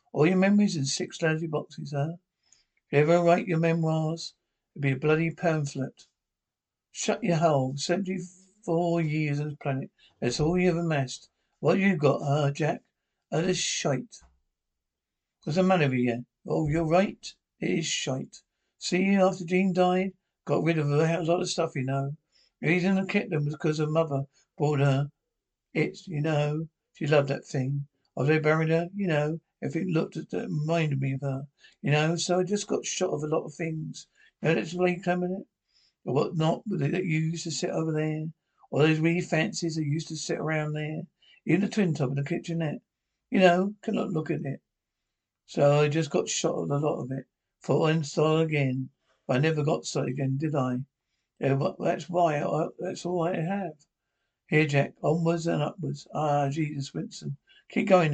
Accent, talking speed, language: British, 200 wpm, English